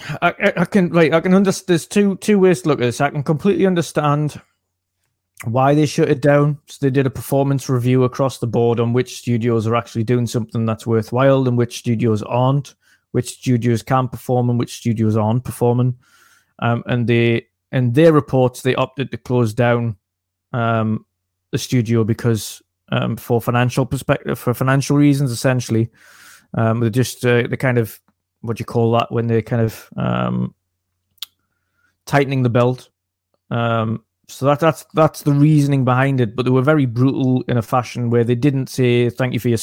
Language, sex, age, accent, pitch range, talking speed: English, male, 20-39, British, 115-135 Hz, 185 wpm